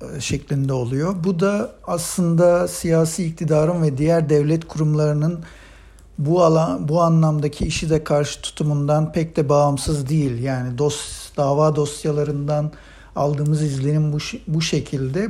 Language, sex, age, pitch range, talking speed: Turkish, male, 60-79, 150-175 Hz, 125 wpm